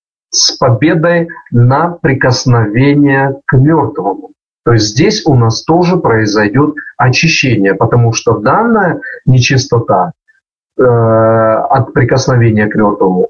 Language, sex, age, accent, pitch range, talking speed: Russian, male, 40-59, native, 120-160 Hz, 105 wpm